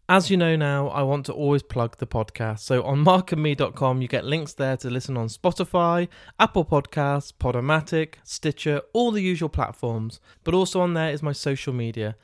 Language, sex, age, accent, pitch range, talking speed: English, male, 20-39, British, 130-165 Hz, 185 wpm